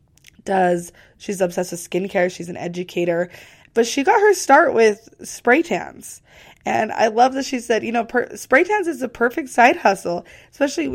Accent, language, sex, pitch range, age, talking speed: American, English, female, 200-260 Hz, 20-39, 175 wpm